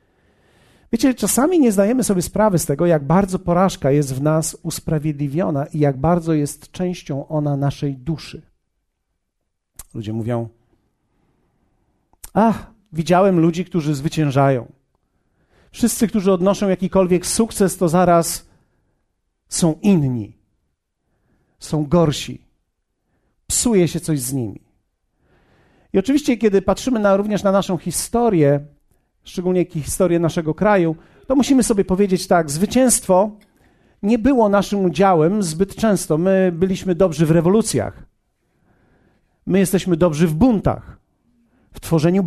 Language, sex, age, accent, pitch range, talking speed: Polish, male, 40-59, native, 145-200 Hz, 115 wpm